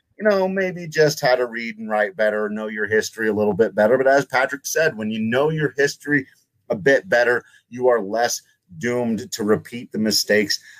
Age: 30-49